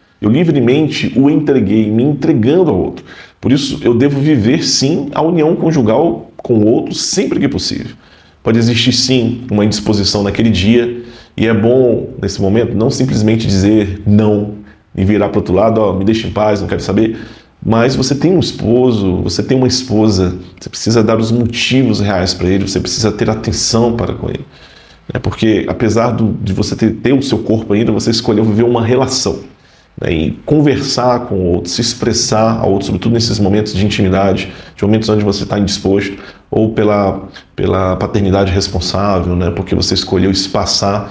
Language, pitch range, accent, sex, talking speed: Portuguese, 100-120 Hz, Brazilian, male, 180 wpm